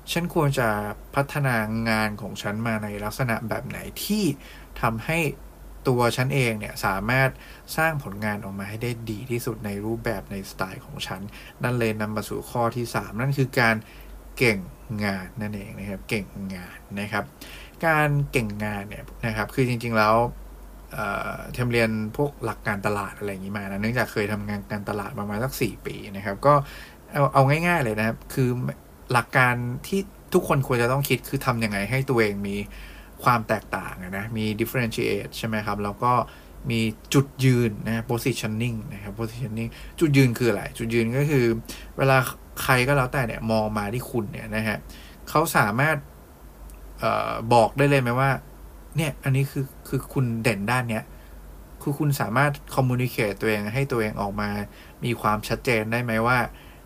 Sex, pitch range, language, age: male, 105-130 Hz, English, 20-39